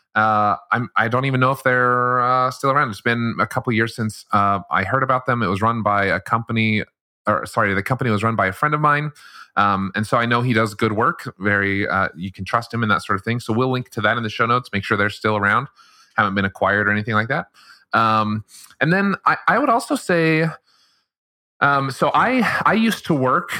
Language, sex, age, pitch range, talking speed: English, male, 30-49, 100-130 Hz, 245 wpm